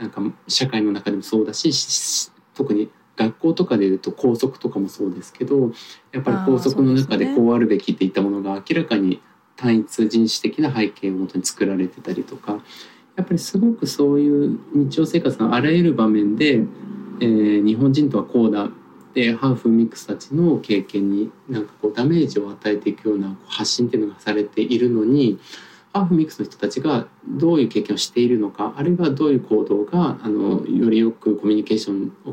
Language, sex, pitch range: Japanese, male, 105-175 Hz